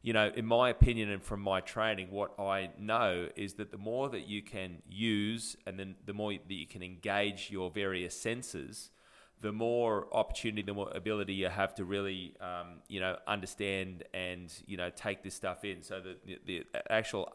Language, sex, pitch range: English, male, 95-110 Hz